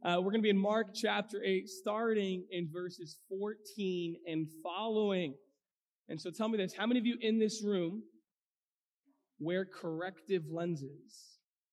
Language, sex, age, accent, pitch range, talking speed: English, male, 20-39, American, 180-230 Hz, 155 wpm